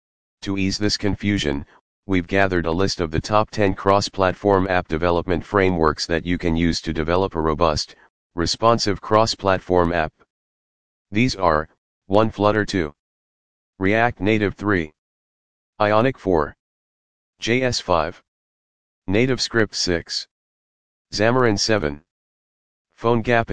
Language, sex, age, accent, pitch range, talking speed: English, male, 40-59, American, 80-100 Hz, 110 wpm